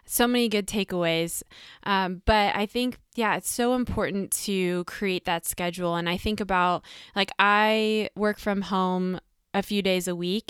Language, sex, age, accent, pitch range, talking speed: English, female, 20-39, American, 175-210 Hz, 170 wpm